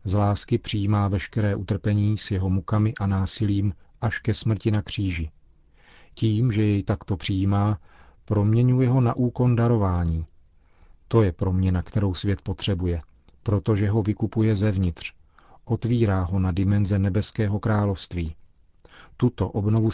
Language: Czech